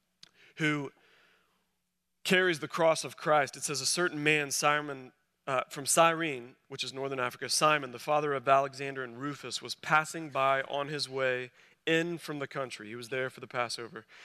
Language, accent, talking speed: English, American, 175 wpm